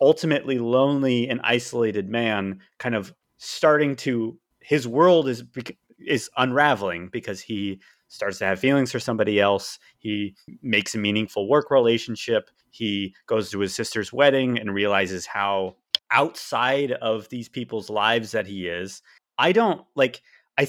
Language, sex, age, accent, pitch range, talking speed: English, male, 30-49, American, 105-140 Hz, 145 wpm